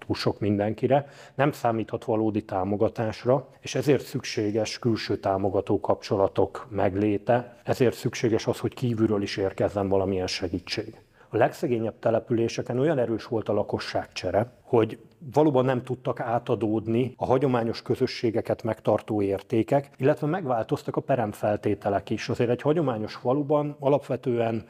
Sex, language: male, Hungarian